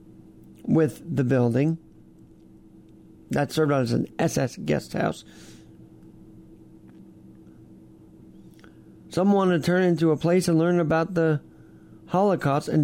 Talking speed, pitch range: 105 wpm, 150-210 Hz